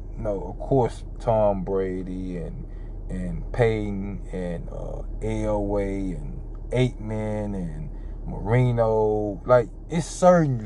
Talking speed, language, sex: 100 wpm, English, male